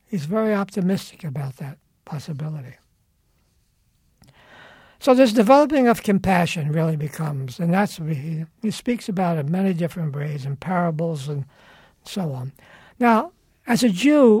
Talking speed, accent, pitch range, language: 135 wpm, American, 155-210 Hz, English